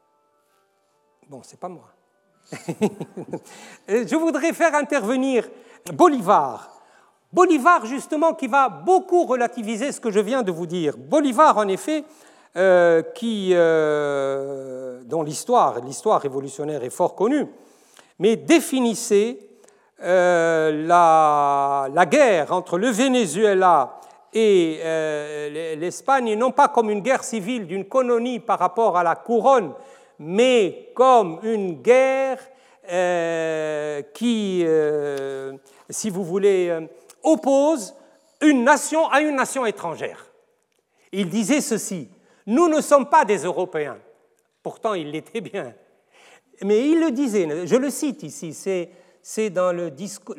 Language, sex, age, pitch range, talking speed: French, male, 60-79, 165-265 Hz, 125 wpm